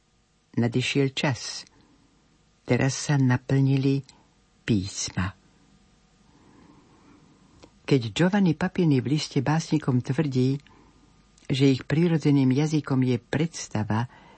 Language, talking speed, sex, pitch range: Slovak, 80 wpm, female, 120-155 Hz